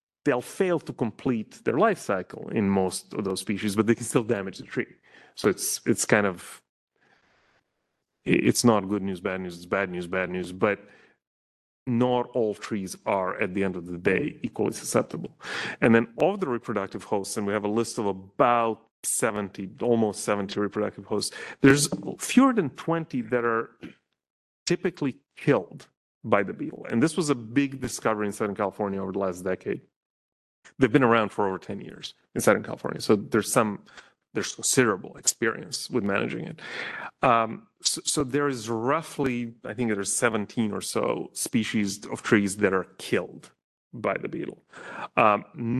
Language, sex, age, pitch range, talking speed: English, male, 30-49, 100-125 Hz, 170 wpm